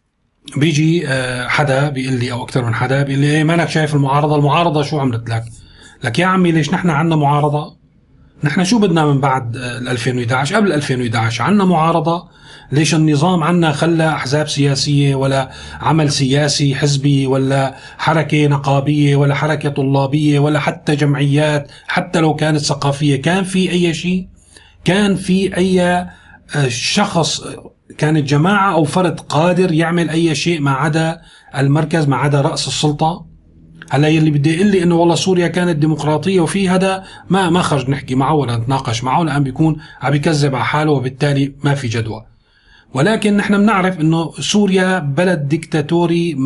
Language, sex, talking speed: Arabic, male, 155 wpm